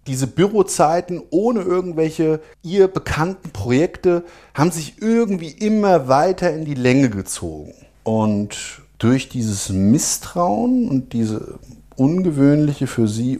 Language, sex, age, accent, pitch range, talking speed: German, male, 50-69, German, 115-170 Hz, 110 wpm